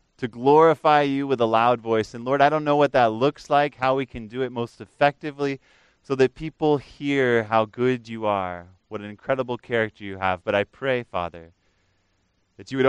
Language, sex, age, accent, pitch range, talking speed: English, male, 20-39, American, 105-140 Hz, 205 wpm